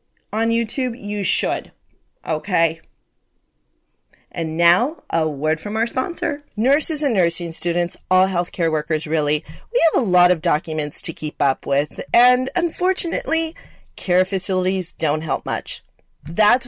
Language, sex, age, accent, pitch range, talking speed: English, female, 40-59, American, 170-245 Hz, 135 wpm